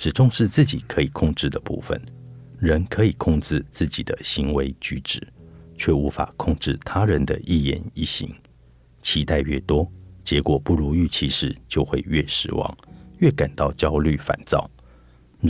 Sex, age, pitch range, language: male, 50-69, 70-85 Hz, Chinese